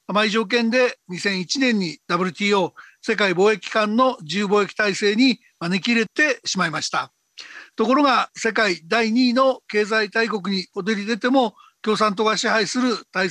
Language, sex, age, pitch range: Japanese, male, 60-79, 205-250 Hz